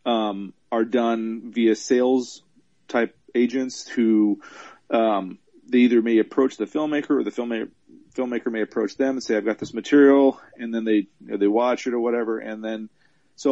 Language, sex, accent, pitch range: English, male, American, 110-125 Hz